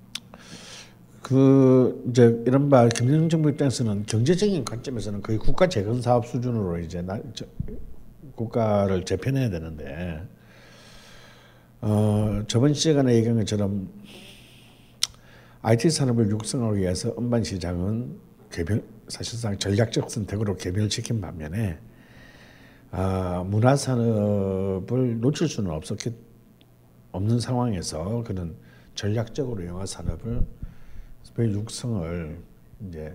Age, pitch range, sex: 60-79, 90-120 Hz, male